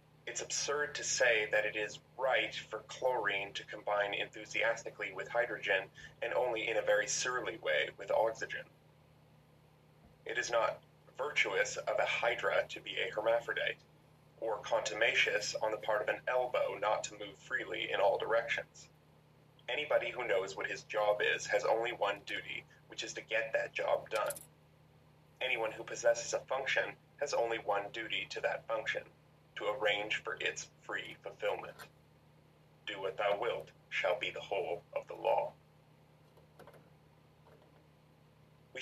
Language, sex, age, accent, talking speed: English, male, 30-49, American, 150 wpm